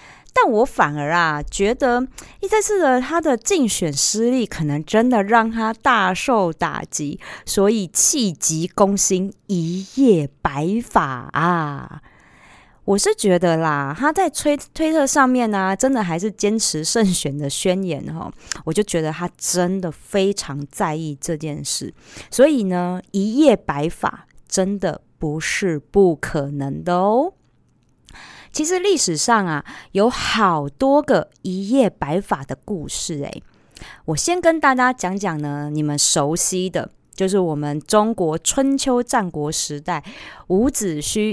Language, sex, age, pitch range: Chinese, female, 30-49, 160-230 Hz